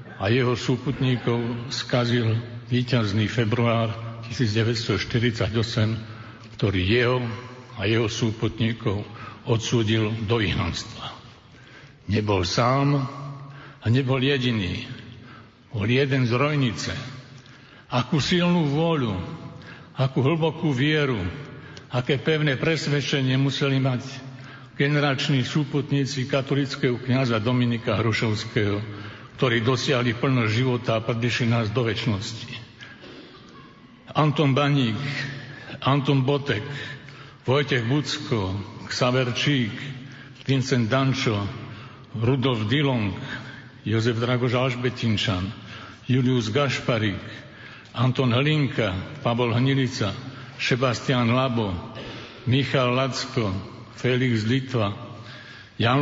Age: 60-79